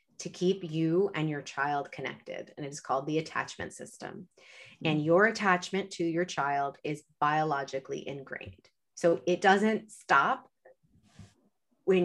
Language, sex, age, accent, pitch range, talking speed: English, female, 30-49, American, 150-200 Hz, 135 wpm